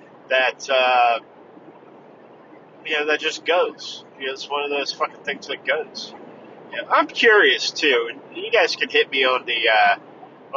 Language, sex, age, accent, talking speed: English, male, 40-59, American, 175 wpm